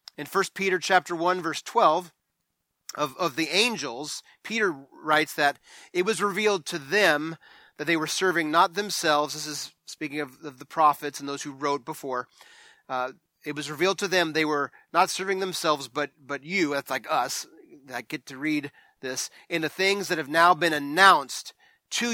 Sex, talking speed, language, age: male, 185 wpm, English, 30-49